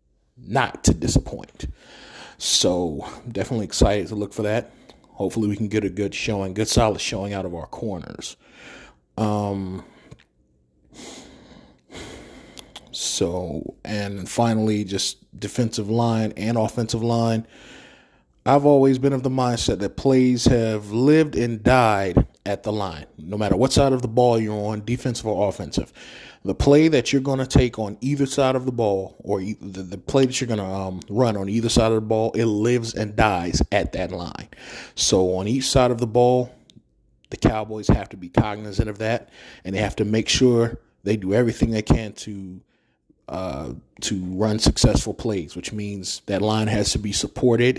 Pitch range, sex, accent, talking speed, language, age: 100-125 Hz, male, American, 170 wpm, English, 30-49